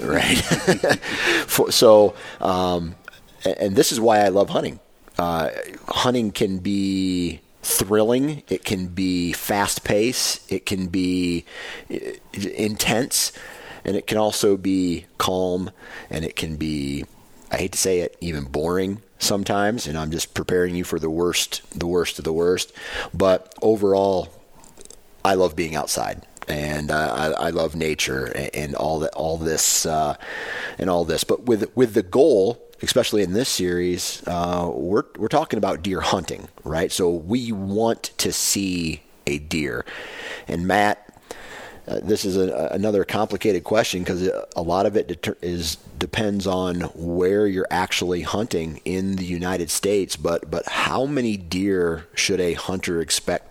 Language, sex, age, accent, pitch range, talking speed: English, male, 30-49, American, 85-100 Hz, 150 wpm